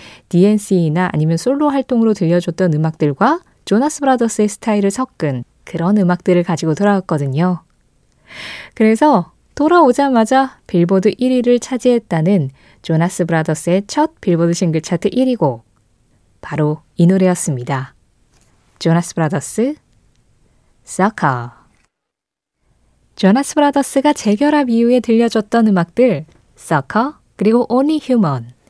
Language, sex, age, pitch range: Korean, female, 20-39, 155-250 Hz